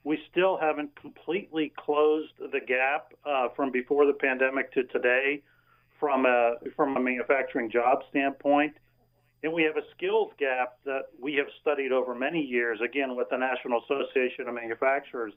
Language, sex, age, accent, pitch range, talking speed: English, male, 40-59, American, 125-150 Hz, 155 wpm